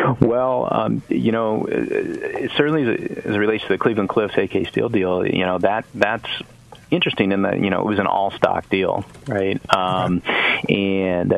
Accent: American